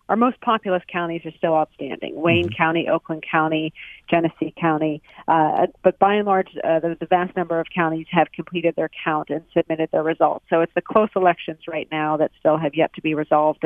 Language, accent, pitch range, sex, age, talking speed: English, American, 155-175 Hz, female, 40-59, 205 wpm